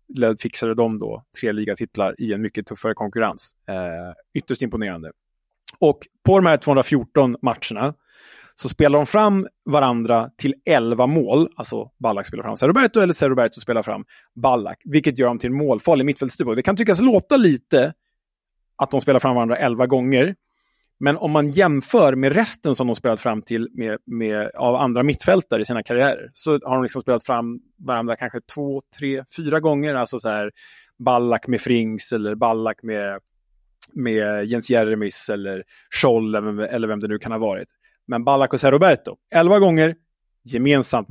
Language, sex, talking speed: Swedish, male, 170 wpm